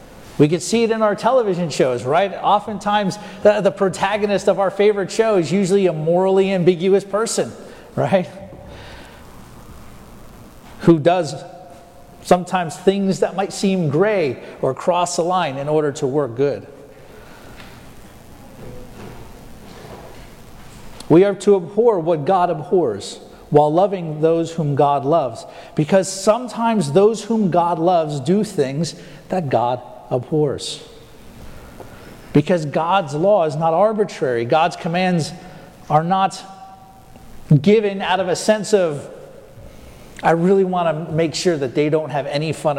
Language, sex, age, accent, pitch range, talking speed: English, male, 40-59, American, 150-195 Hz, 130 wpm